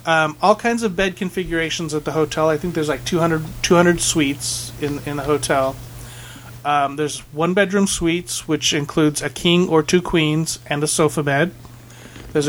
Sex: male